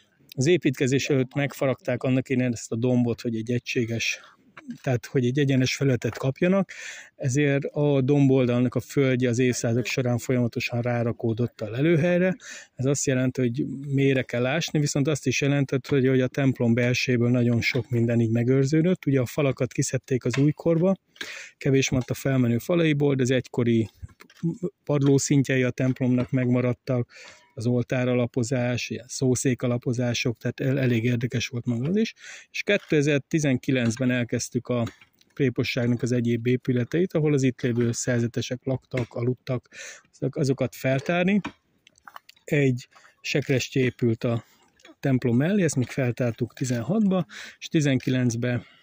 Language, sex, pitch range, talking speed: Hungarian, male, 125-140 Hz, 135 wpm